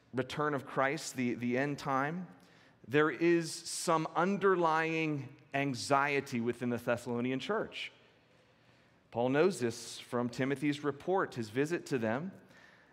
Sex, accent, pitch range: male, American, 130-170 Hz